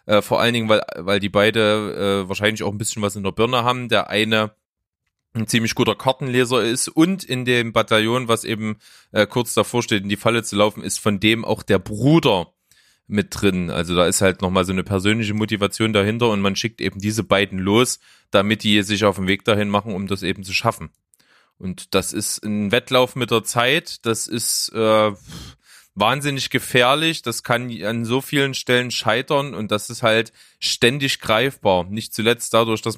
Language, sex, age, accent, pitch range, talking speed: German, male, 20-39, German, 100-125 Hz, 195 wpm